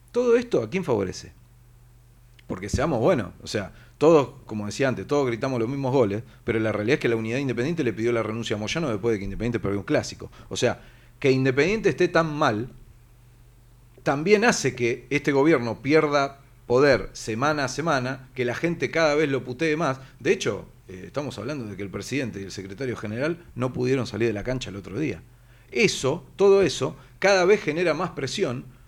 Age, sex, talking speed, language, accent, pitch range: 40-59, male, 195 wpm, Spanish, Argentinian, 120-155 Hz